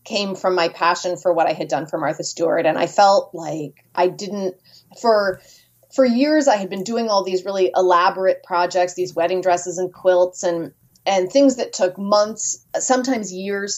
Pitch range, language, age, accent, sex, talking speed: 175-230 Hz, English, 30-49, American, female, 185 wpm